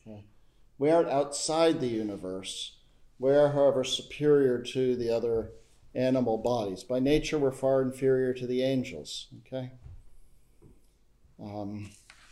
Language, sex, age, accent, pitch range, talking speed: English, male, 50-69, American, 110-130 Hz, 115 wpm